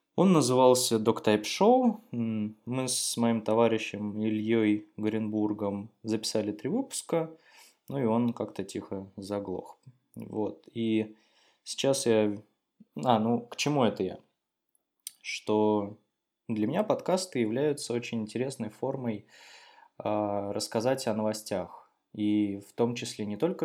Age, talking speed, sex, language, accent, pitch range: 20-39, 115 wpm, male, Russian, native, 105-130 Hz